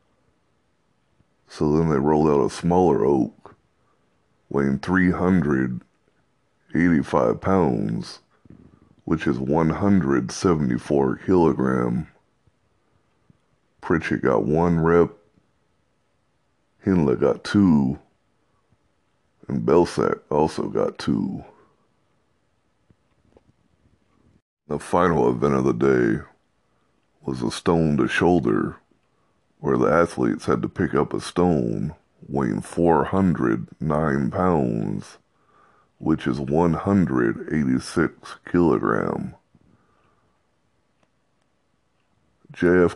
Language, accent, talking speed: English, American, 80 wpm